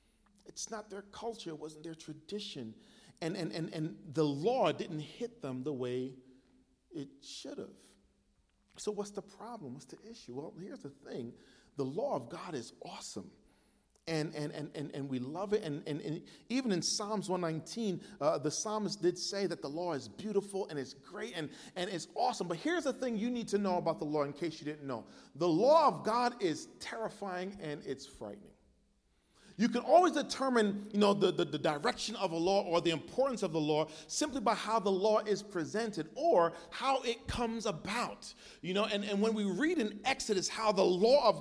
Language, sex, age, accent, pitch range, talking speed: English, male, 40-59, American, 165-225 Hz, 205 wpm